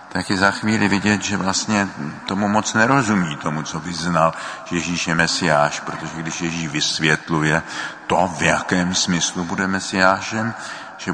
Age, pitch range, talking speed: 50-69, 80-95 Hz, 145 wpm